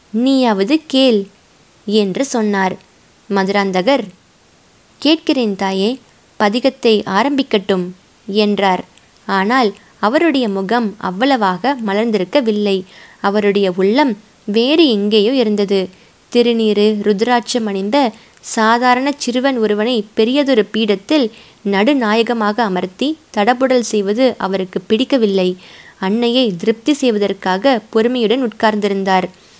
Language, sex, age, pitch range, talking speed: Tamil, female, 20-39, 200-260 Hz, 80 wpm